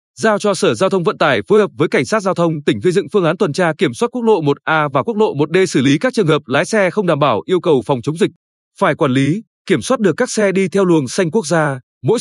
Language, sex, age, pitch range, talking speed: Vietnamese, male, 20-39, 150-205 Hz, 295 wpm